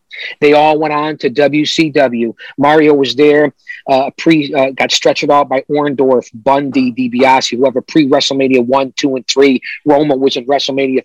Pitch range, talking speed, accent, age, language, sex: 130-155 Hz, 155 wpm, American, 40-59, English, male